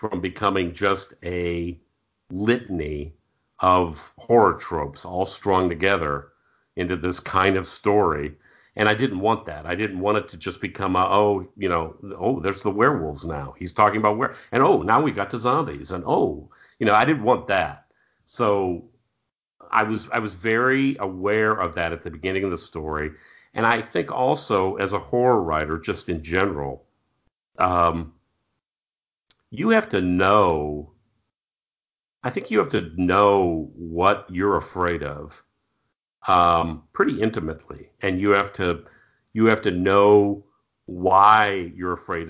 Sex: male